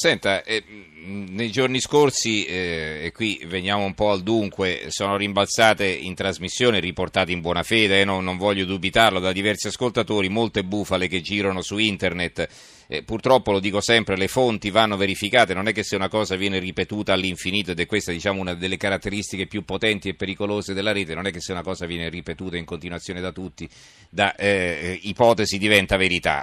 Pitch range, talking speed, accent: 95-115 Hz, 185 wpm, native